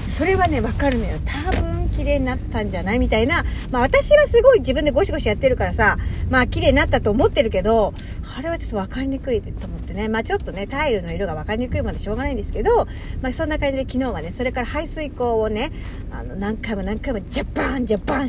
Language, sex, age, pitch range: Japanese, female, 40-59, 205-285 Hz